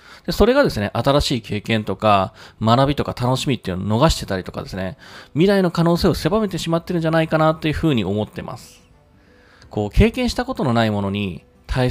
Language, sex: Japanese, male